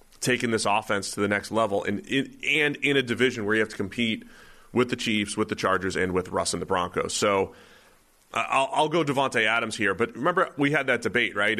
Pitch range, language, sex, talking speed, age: 100-125 Hz, English, male, 230 wpm, 30-49